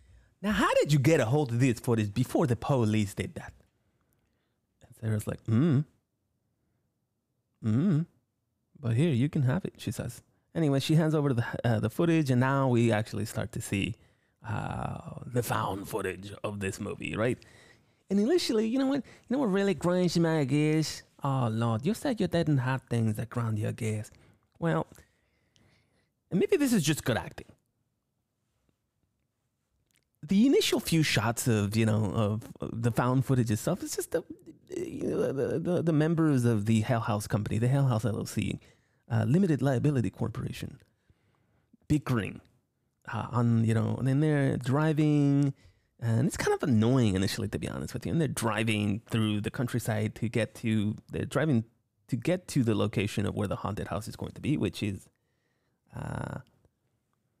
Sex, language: male, English